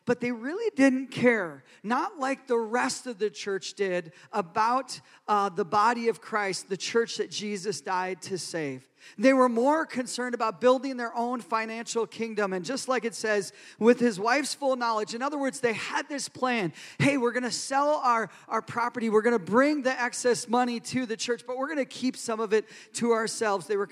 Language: English